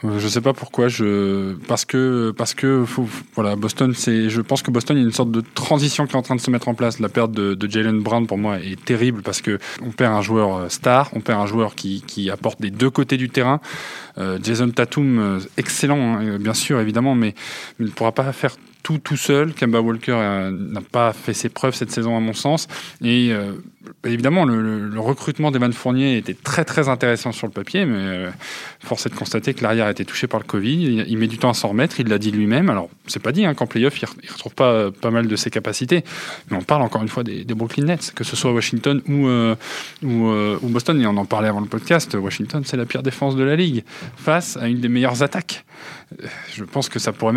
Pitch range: 110-130 Hz